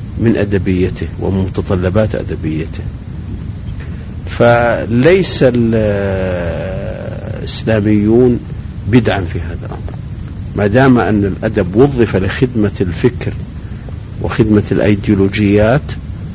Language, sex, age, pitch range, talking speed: Arabic, male, 50-69, 95-115 Hz, 70 wpm